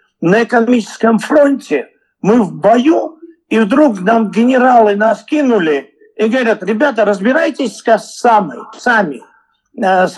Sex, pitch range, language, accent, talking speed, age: male, 205-280 Hz, Russian, native, 120 wpm, 50-69